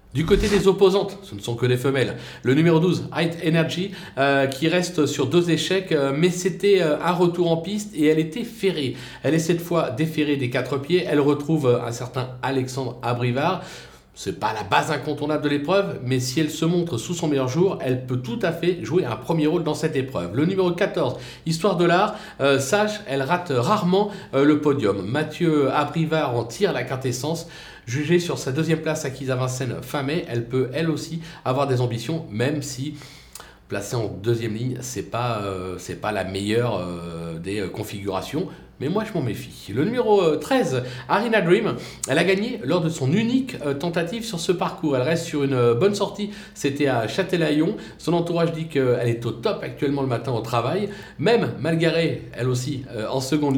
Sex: male